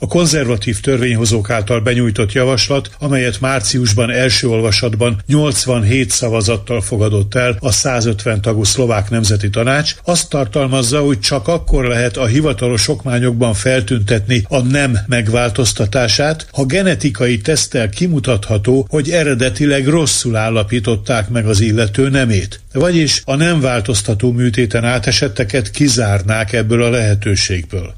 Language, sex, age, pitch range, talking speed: Hungarian, male, 60-79, 115-135 Hz, 120 wpm